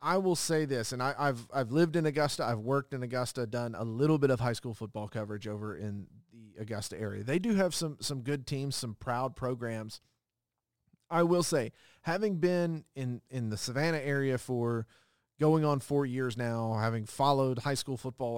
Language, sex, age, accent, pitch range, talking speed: English, male, 40-59, American, 115-140 Hz, 195 wpm